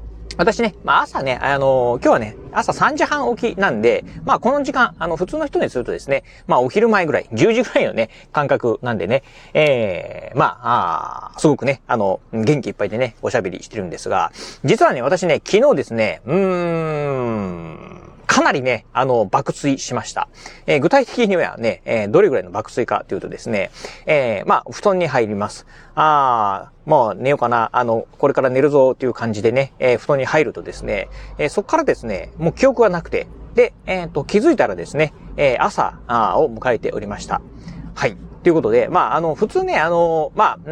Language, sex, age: Japanese, male, 40-59